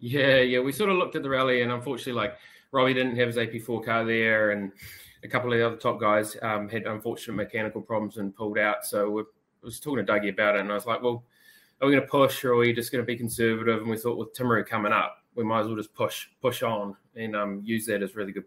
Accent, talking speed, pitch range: Australian, 270 wpm, 105-120 Hz